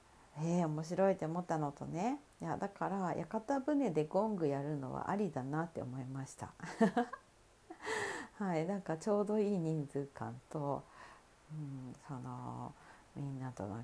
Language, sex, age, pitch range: Japanese, female, 50-69, 140-205 Hz